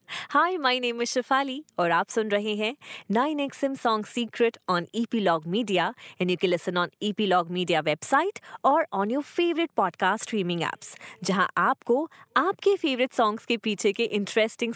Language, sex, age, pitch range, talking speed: Hindi, female, 20-39, 180-260 Hz, 45 wpm